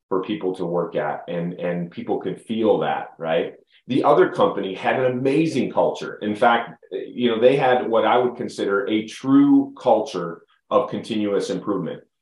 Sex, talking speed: male, 170 wpm